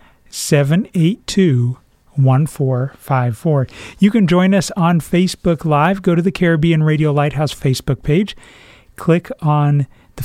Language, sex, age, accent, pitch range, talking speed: English, male, 40-59, American, 140-170 Hz, 110 wpm